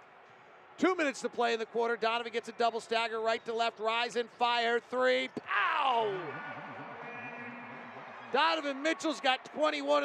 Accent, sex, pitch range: American, male, 215-250 Hz